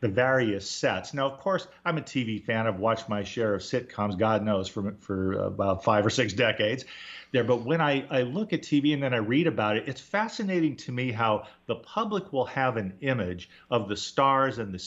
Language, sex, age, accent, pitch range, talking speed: English, male, 40-59, American, 105-150 Hz, 220 wpm